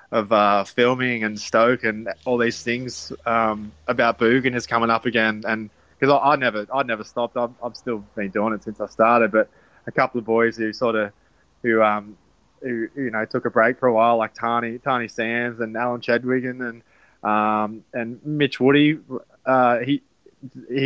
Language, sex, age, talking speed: English, male, 20-39, 195 wpm